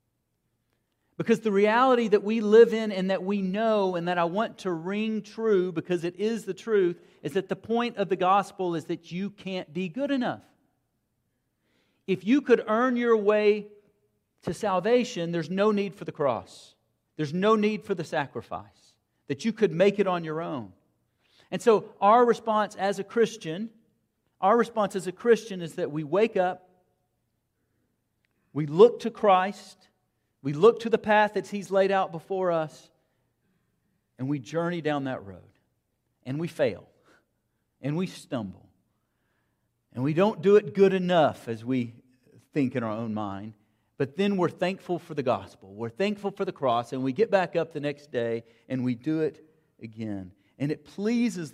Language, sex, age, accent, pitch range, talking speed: English, male, 40-59, American, 125-205 Hz, 175 wpm